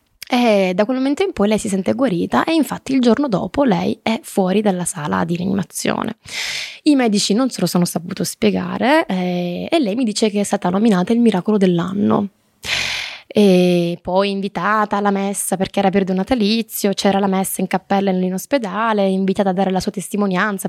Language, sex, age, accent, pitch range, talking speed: Italian, female, 20-39, native, 185-215 Hz, 185 wpm